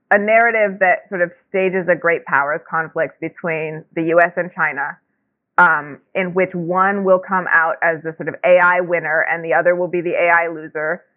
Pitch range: 160-190 Hz